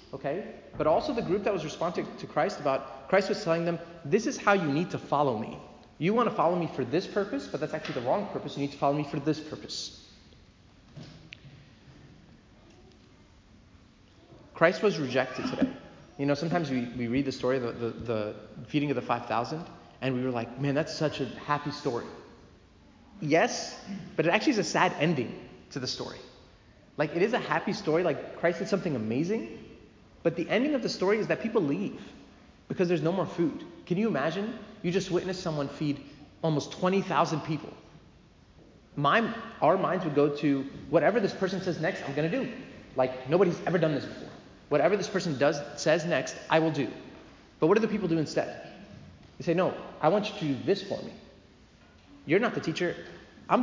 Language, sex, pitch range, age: English, male, 130-185 Hz, 30-49